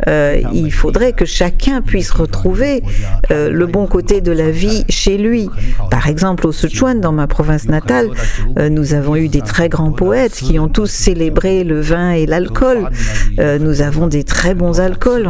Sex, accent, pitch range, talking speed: female, French, 145-185 Hz, 180 wpm